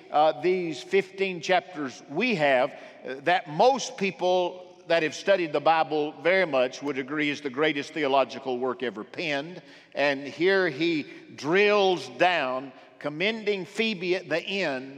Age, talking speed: 50-69, 145 wpm